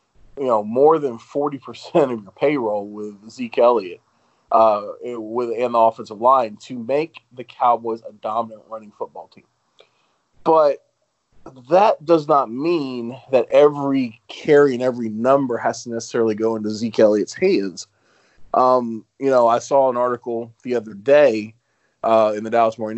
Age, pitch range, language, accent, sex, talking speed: 30-49, 115-140 Hz, English, American, male, 155 wpm